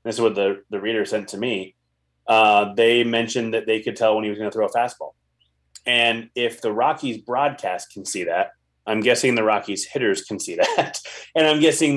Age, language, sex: 30-49, English, male